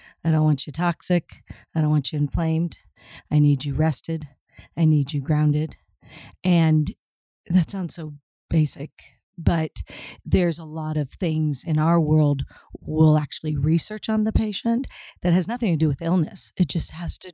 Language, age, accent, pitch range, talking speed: English, 40-59, American, 150-175 Hz, 170 wpm